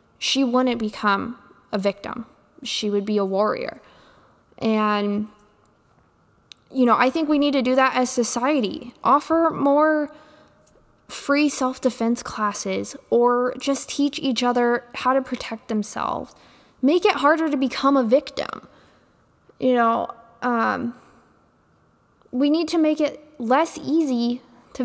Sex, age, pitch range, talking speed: female, 10-29, 225-270 Hz, 130 wpm